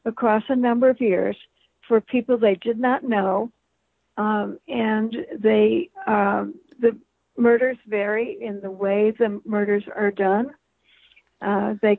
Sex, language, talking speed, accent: female, English, 135 wpm, American